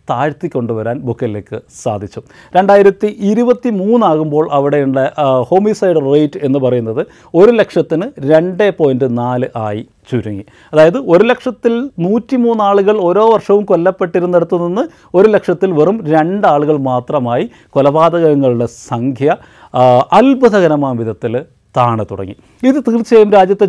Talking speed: 100 wpm